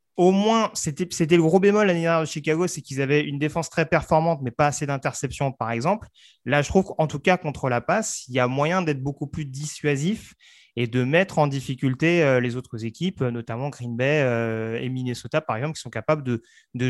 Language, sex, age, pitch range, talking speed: French, male, 30-49, 130-160 Hz, 215 wpm